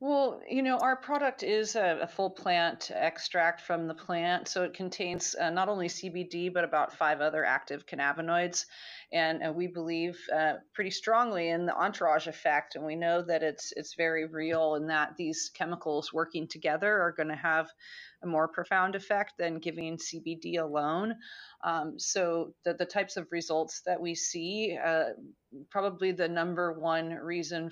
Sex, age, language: female, 30-49, English